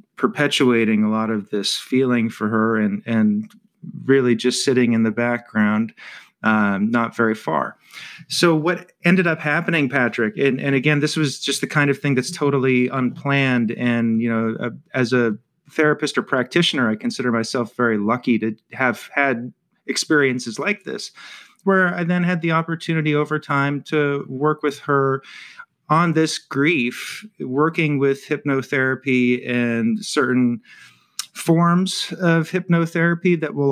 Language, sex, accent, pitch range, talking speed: English, male, American, 120-155 Hz, 150 wpm